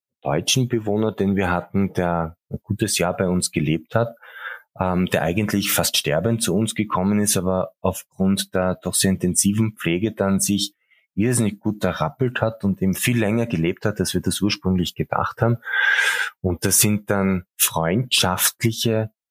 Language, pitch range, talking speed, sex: German, 95-110 Hz, 160 wpm, male